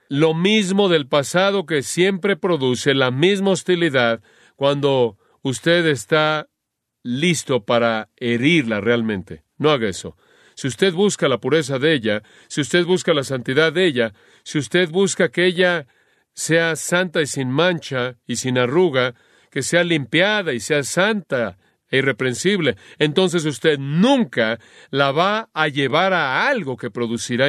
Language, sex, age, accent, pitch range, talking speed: Spanish, male, 40-59, Mexican, 130-175 Hz, 145 wpm